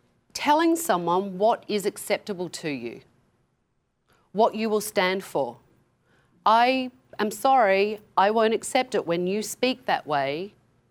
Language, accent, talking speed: English, Australian, 130 wpm